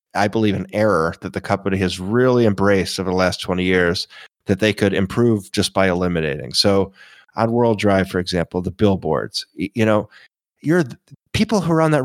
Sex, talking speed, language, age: male, 190 wpm, English, 30-49